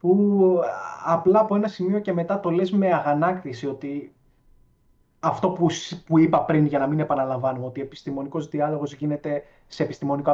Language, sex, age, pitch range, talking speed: Greek, male, 20-39, 140-180 Hz, 155 wpm